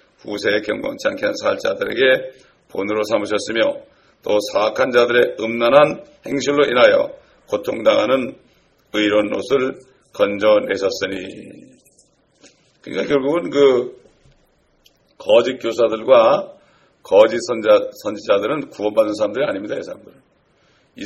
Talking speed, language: 90 wpm, English